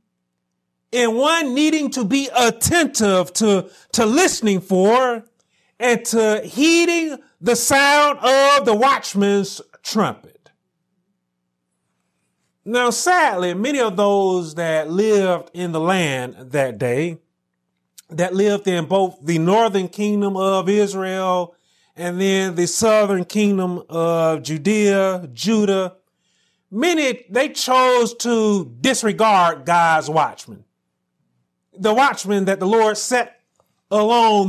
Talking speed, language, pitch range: 110 wpm, English, 165-240 Hz